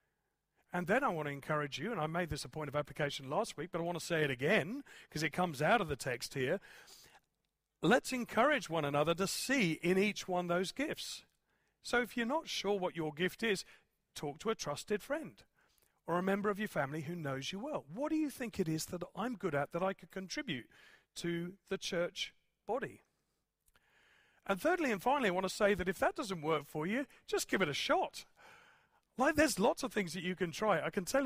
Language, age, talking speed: English, 40-59, 225 wpm